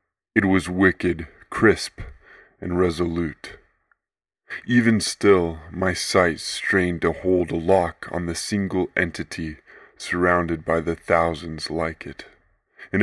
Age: 20-39